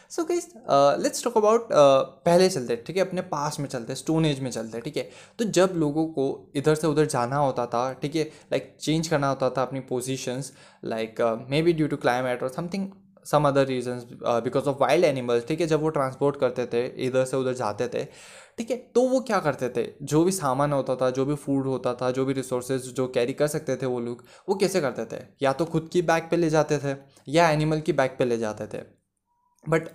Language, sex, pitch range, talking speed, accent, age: Hindi, male, 130-175 Hz, 235 wpm, native, 20-39